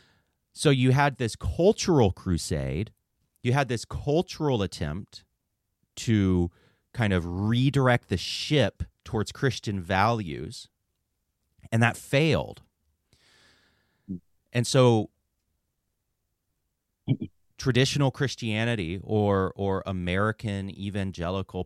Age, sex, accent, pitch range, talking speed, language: 30-49, male, American, 85-110 Hz, 85 wpm, English